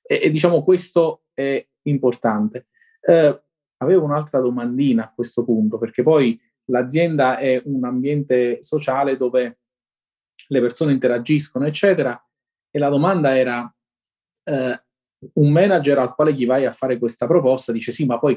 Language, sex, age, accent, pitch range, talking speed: Italian, male, 30-49, native, 120-165 Hz, 145 wpm